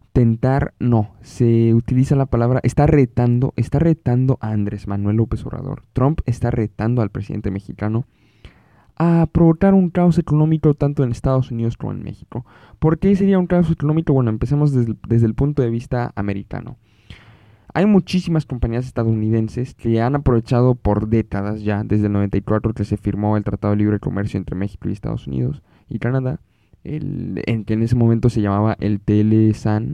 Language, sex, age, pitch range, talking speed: Spanish, male, 20-39, 105-135 Hz, 175 wpm